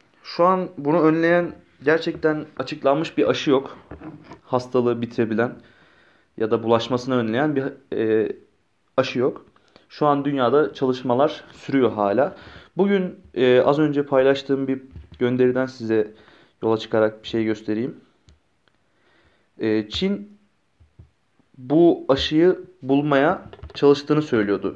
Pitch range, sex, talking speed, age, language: 110-145 Hz, male, 110 wpm, 30-49, Turkish